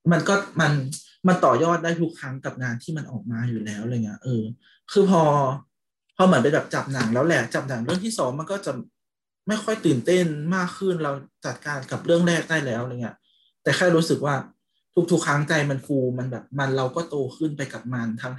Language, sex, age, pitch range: Thai, male, 20-39, 125-160 Hz